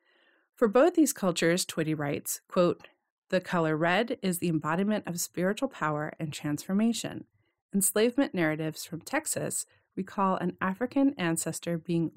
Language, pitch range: English, 160-215 Hz